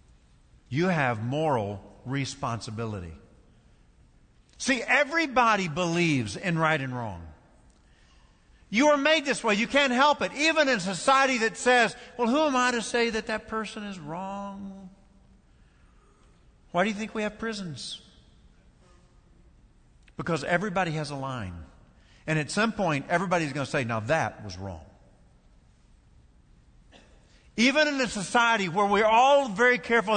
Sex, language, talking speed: male, English, 135 wpm